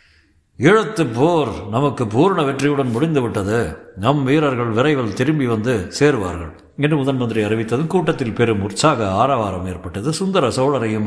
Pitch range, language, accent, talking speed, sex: 105-140 Hz, Tamil, native, 120 wpm, male